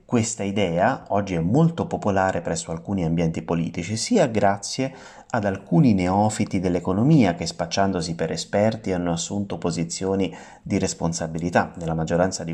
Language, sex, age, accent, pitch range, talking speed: Italian, male, 30-49, native, 90-135 Hz, 135 wpm